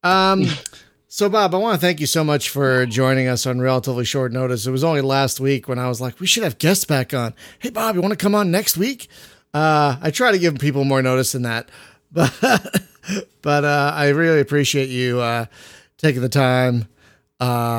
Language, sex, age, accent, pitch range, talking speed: English, male, 40-59, American, 125-160 Hz, 215 wpm